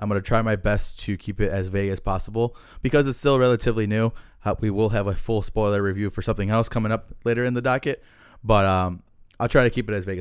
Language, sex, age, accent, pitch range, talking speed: English, male, 20-39, American, 100-115 Hz, 255 wpm